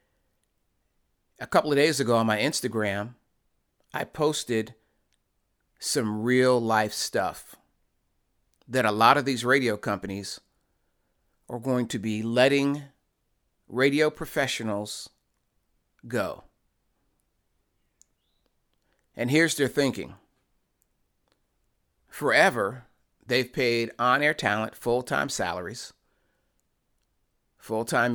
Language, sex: English, male